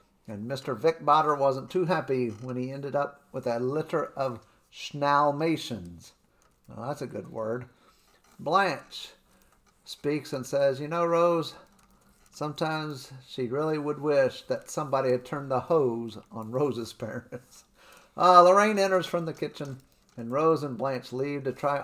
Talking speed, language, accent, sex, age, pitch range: 150 wpm, English, American, male, 50-69, 125-155 Hz